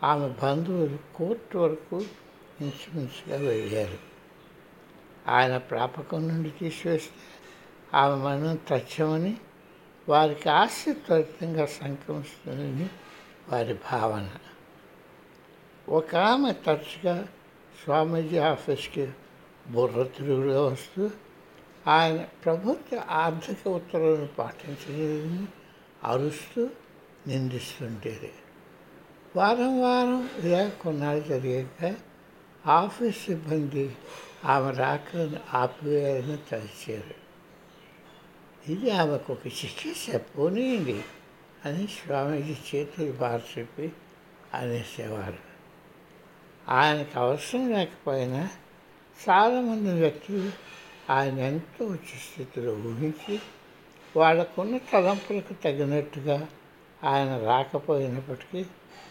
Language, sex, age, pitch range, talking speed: Telugu, male, 60-79, 140-180 Hz, 70 wpm